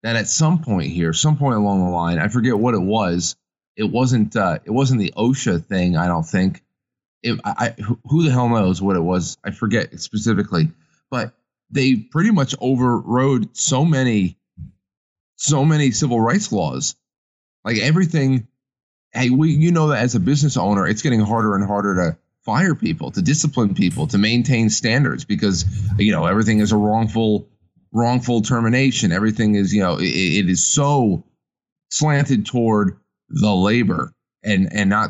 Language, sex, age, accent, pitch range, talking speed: English, male, 30-49, American, 100-130 Hz, 170 wpm